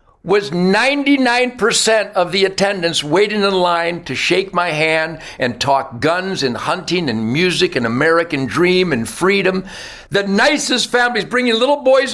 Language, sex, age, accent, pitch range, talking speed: English, male, 60-79, American, 170-245 Hz, 150 wpm